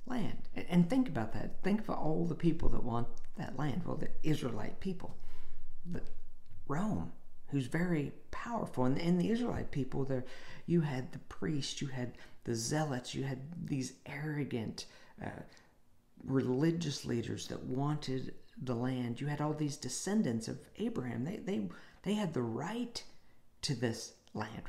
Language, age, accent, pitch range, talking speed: English, 50-69, American, 125-180 Hz, 155 wpm